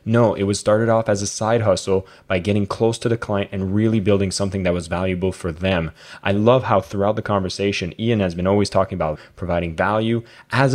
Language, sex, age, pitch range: English, male, 20-39, 95-110 Hz